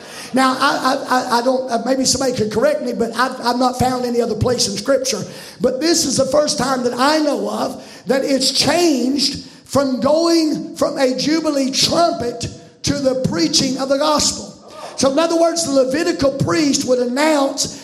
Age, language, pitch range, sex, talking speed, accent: 50-69, English, 260-295 Hz, male, 180 wpm, American